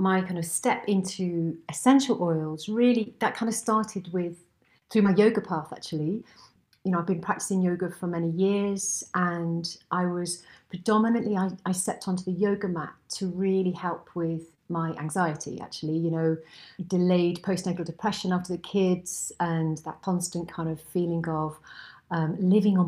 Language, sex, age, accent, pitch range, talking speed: English, female, 40-59, British, 165-190 Hz, 165 wpm